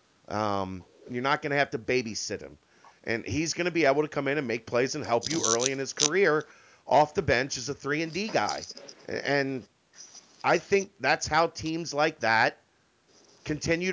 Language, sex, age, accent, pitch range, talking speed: English, male, 40-59, American, 130-160 Hz, 200 wpm